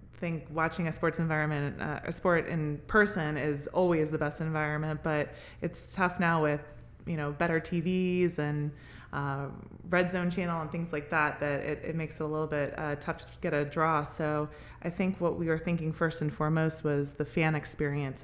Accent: American